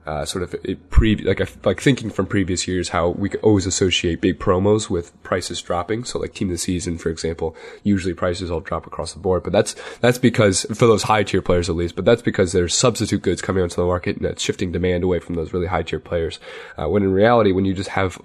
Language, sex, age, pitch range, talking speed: English, male, 20-39, 90-105 Hz, 255 wpm